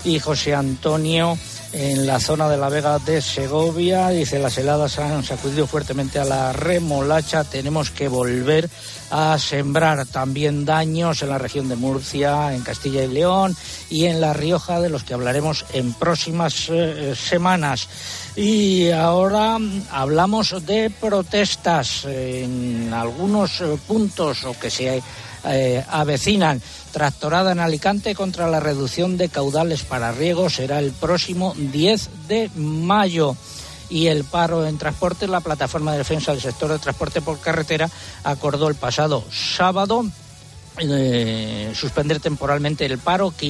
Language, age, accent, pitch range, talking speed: Spanish, 60-79, Spanish, 135-175 Hz, 140 wpm